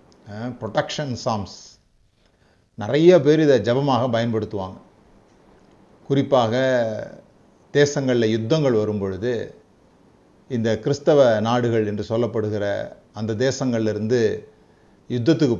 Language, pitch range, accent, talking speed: Tamil, 110-140 Hz, native, 75 wpm